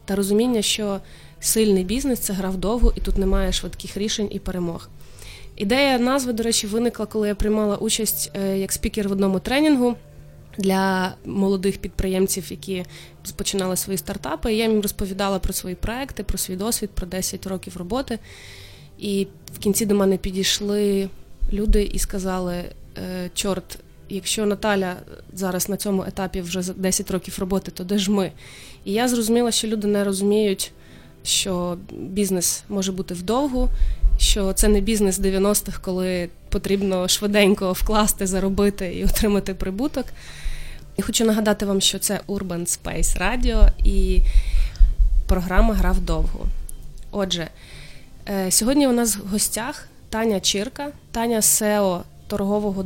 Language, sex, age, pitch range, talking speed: Ukrainian, female, 20-39, 185-215 Hz, 145 wpm